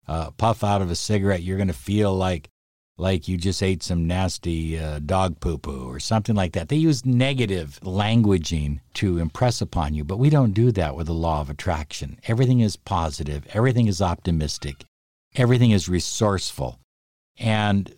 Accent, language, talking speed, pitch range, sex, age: American, English, 175 wpm, 85-115 Hz, male, 50-69